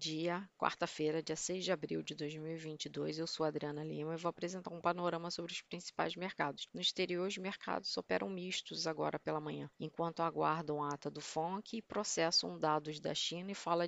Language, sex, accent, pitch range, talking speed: Portuguese, female, Brazilian, 160-180 Hz, 185 wpm